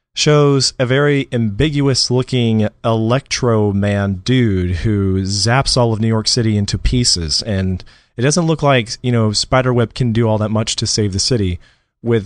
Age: 30-49